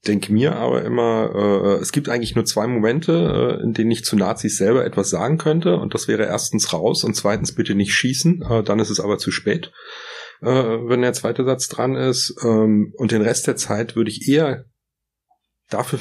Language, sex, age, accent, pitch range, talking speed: German, male, 40-59, German, 100-120 Hz, 205 wpm